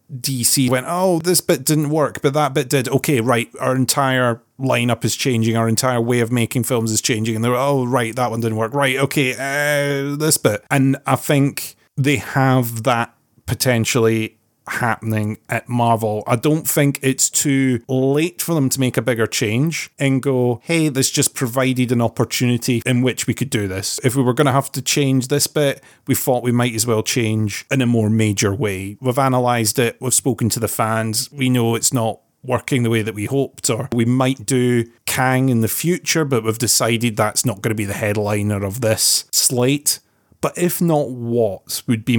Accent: British